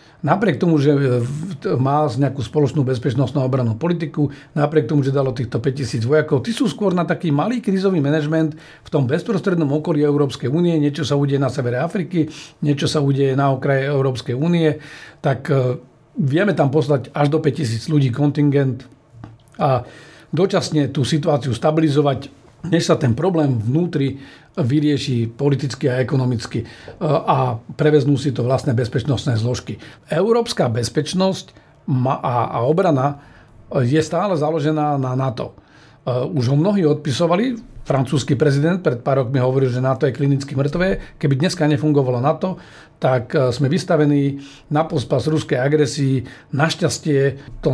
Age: 50-69